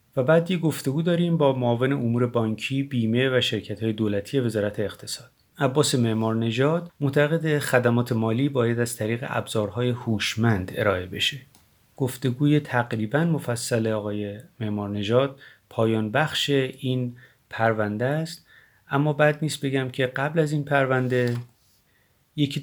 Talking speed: 130 wpm